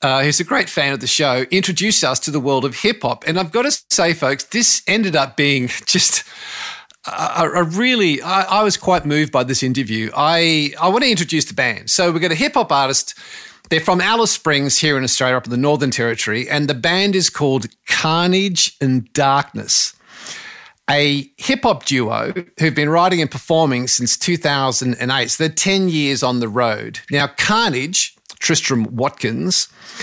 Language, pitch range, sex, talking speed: English, 130-175 Hz, male, 180 wpm